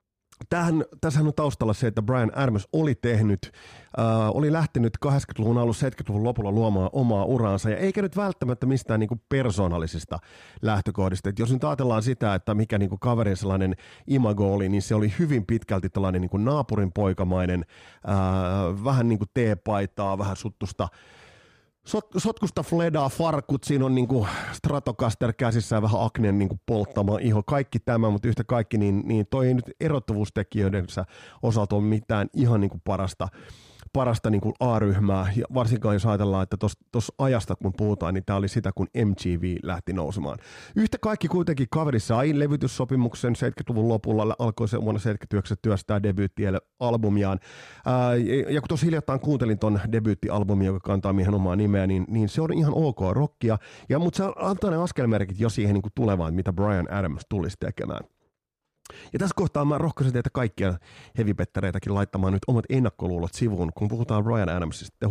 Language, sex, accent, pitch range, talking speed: Finnish, male, native, 100-130 Hz, 155 wpm